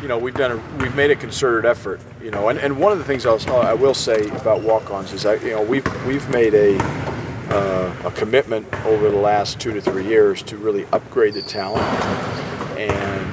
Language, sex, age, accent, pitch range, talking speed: English, male, 40-59, American, 100-130 Hz, 220 wpm